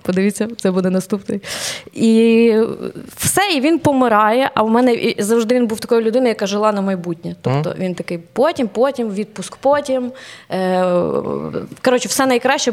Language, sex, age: Ukrainian, female, 20-39